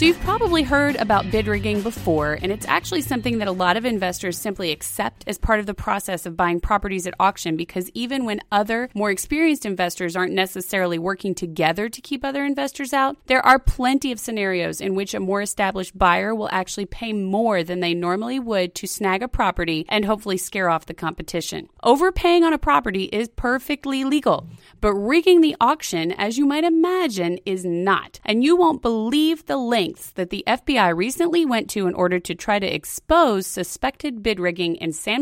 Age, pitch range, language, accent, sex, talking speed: 30-49, 180-265 Hz, English, American, female, 195 wpm